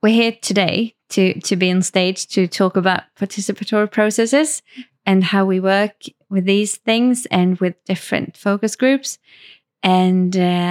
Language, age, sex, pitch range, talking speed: English, 20-39, female, 175-205 Hz, 145 wpm